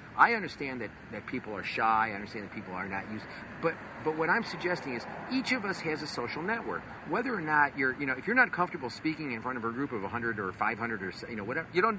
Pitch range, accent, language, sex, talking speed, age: 115-170 Hz, American, English, male, 265 wpm, 50-69